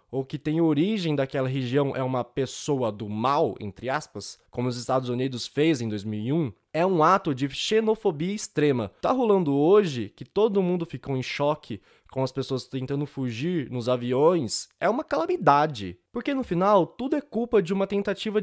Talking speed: 175 wpm